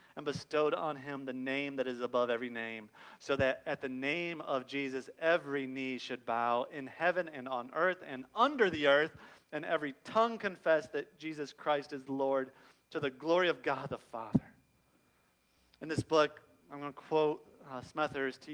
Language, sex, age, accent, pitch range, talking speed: English, male, 40-59, American, 140-190 Hz, 180 wpm